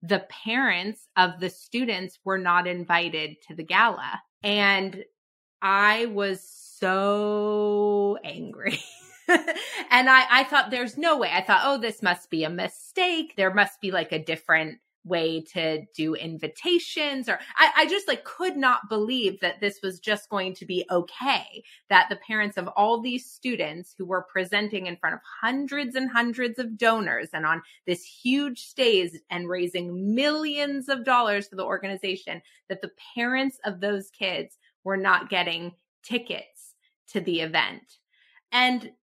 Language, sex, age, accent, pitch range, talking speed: English, female, 30-49, American, 185-240 Hz, 155 wpm